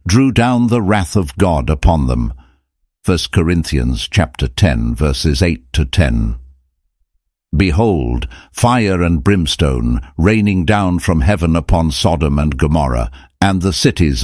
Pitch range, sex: 70-90 Hz, male